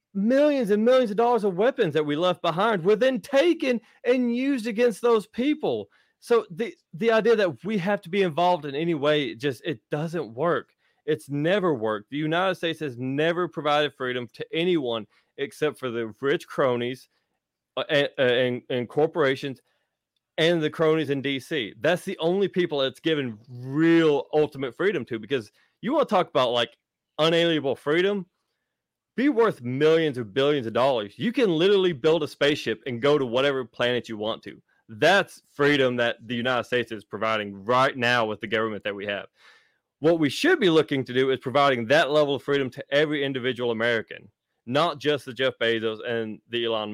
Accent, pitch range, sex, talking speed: American, 125-175 Hz, male, 180 wpm